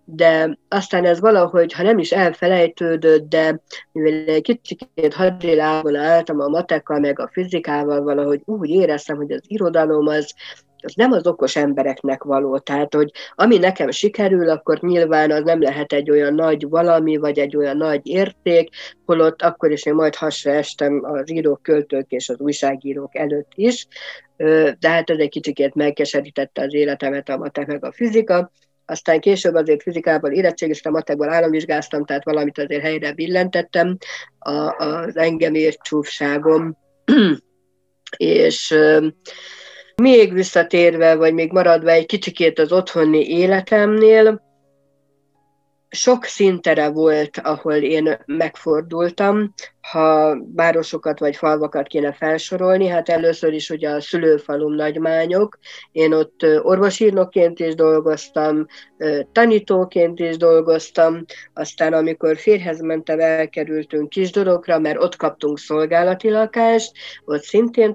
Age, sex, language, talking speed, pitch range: 50-69, female, Hungarian, 130 wpm, 150-175 Hz